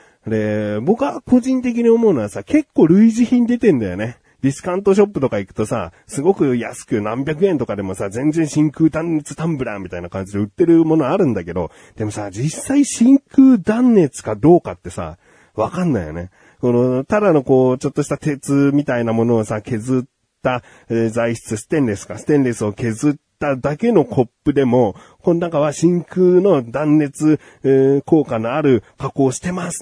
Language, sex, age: Japanese, male, 40-59